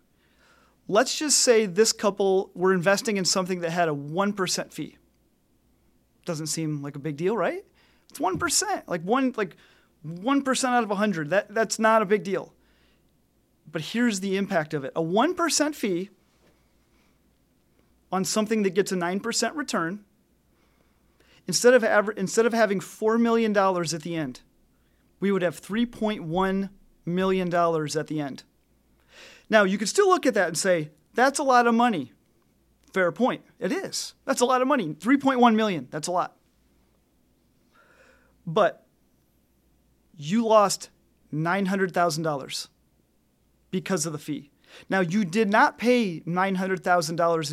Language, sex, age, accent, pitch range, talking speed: English, male, 30-49, American, 170-225 Hz, 145 wpm